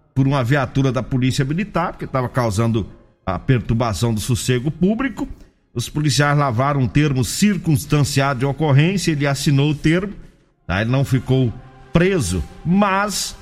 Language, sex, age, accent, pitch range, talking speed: Portuguese, male, 50-69, Brazilian, 125-170 Hz, 145 wpm